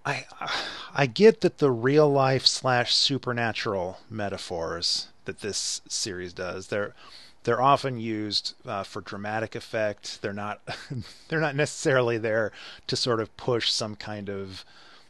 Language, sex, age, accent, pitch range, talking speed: English, male, 30-49, American, 100-125 Hz, 130 wpm